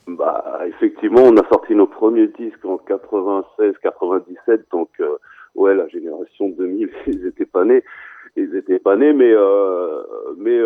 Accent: French